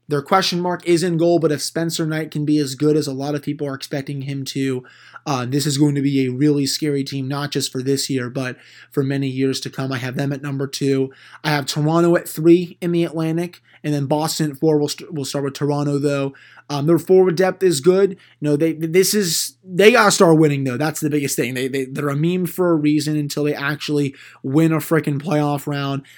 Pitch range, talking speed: 140-165 Hz, 245 wpm